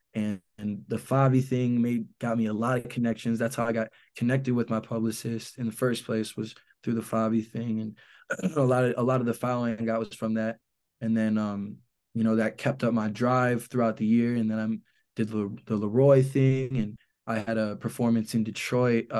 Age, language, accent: 20-39, English, American